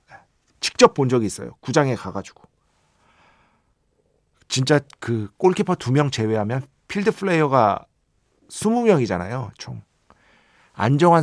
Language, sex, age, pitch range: Korean, male, 50-69, 120-165 Hz